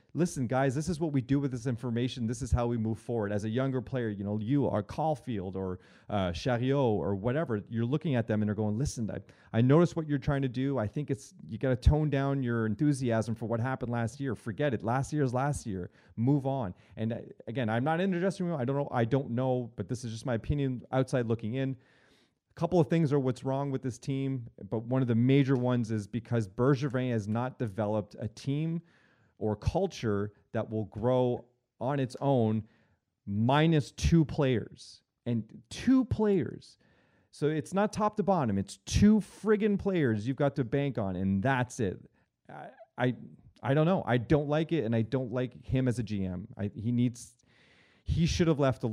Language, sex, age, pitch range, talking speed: English, male, 30-49, 110-140 Hz, 210 wpm